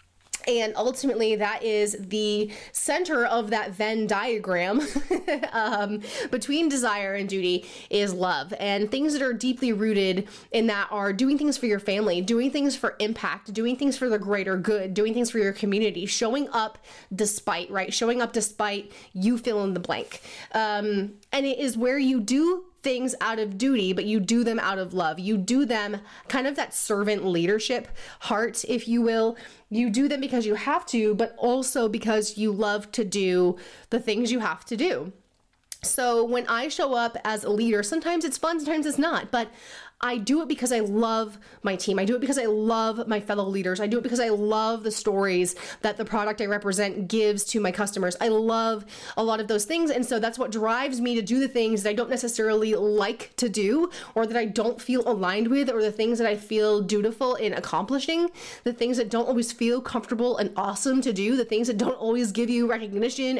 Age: 20-39